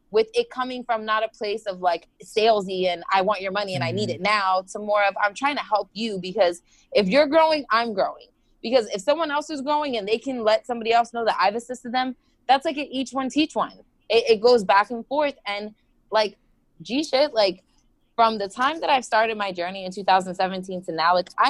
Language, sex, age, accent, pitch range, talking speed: English, female, 20-39, American, 185-235 Hz, 225 wpm